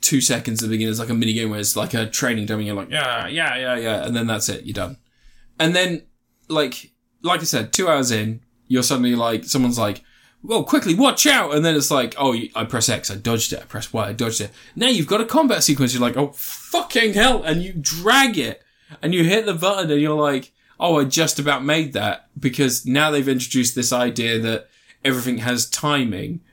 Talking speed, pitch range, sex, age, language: 230 wpm, 120-160 Hz, male, 10-29, English